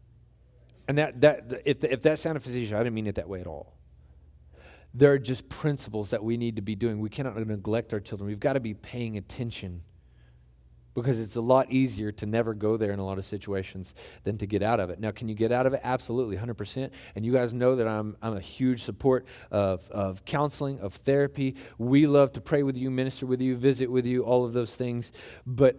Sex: male